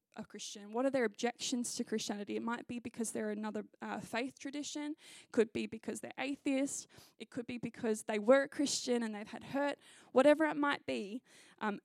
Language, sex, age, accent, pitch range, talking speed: English, female, 10-29, Australian, 230-290 Hz, 205 wpm